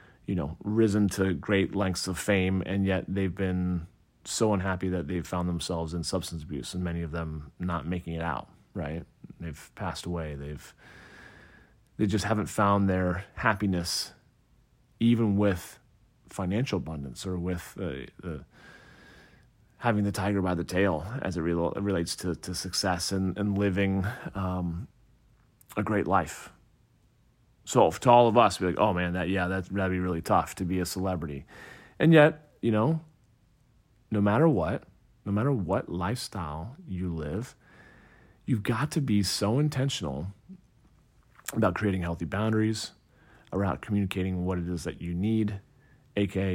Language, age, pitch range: English, 30-49, 85-105 Hz